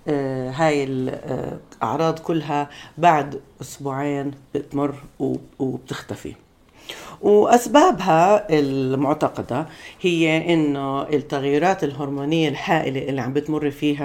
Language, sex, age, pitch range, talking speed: Arabic, female, 50-69, 135-160 Hz, 75 wpm